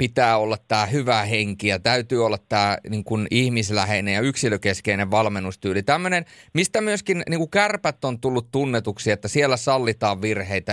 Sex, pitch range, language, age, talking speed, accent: male, 110-155 Hz, Finnish, 30-49, 140 wpm, native